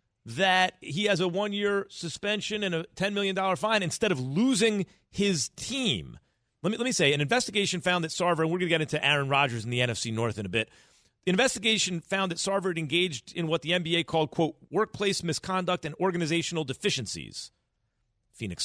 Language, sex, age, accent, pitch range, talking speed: English, male, 40-59, American, 130-185 Hz, 195 wpm